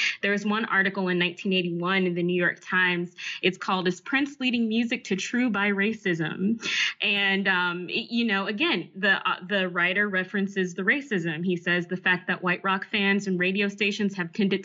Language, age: English, 20-39